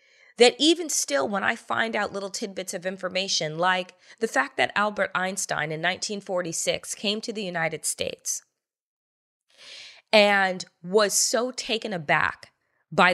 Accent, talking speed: American, 135 wpm